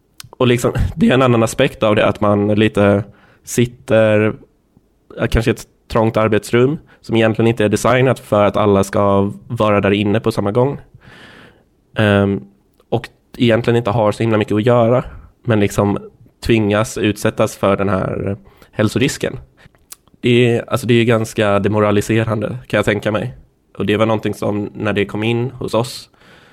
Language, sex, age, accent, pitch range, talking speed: Swedish, male, 20-39, native, 105-120 Hz, 160 wpm